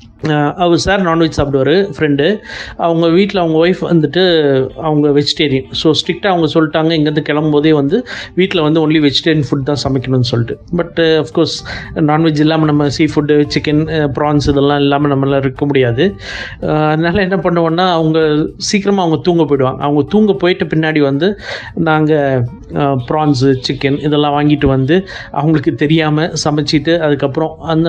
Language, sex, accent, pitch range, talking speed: Tamil, male, native, 140-165 Hz, 140 wpm